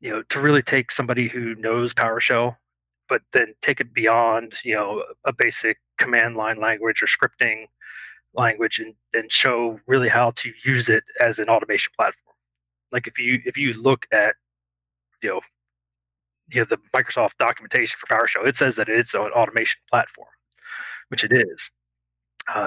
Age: 30-49